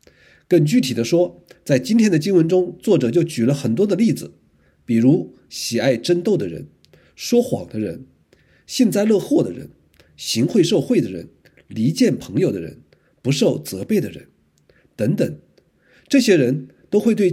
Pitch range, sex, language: 130-185 Hz, male, Chinese